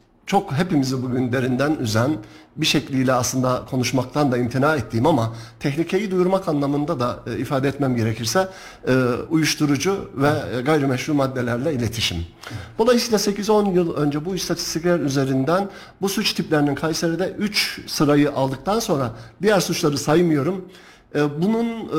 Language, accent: Turkish, native